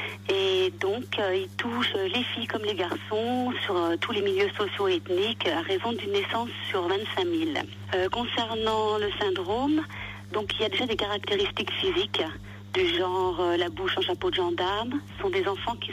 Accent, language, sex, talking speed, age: French, French, female, 190 wpm, 40-59